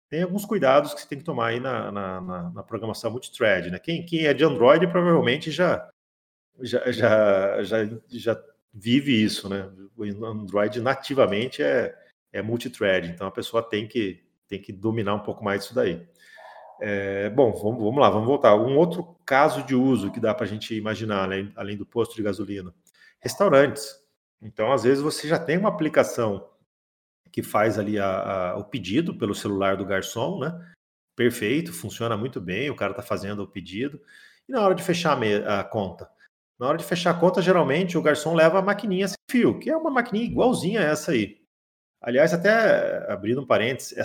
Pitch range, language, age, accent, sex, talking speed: 100-160 Hz, Portuguese, 40-59, Brazilian, male, 190 wpm